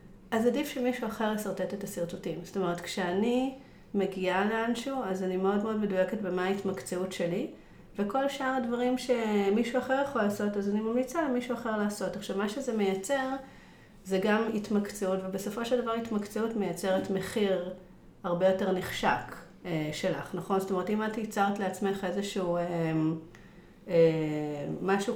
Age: 40-59